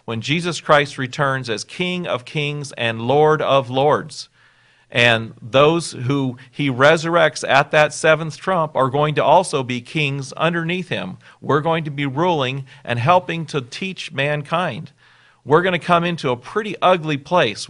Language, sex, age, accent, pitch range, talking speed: English, male, 40-59, American, 125-155 Hz, 165 wpm